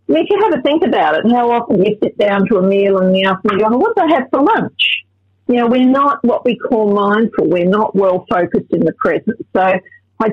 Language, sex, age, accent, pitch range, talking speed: English, female, 50-69, Australian, 190-225 Hz, 255 wpm